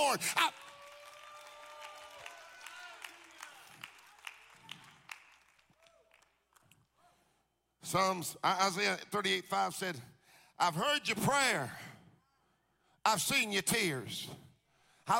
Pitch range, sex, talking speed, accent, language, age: 175-225 Hz, male, 60 wpm, American, English, 50-69